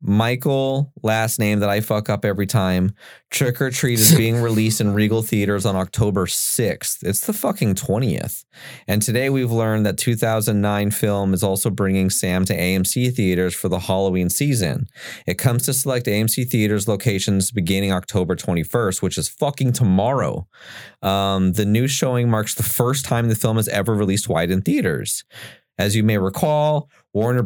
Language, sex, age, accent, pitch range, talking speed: English, male, 30-49, American, 100-120 Hz, 170 wpm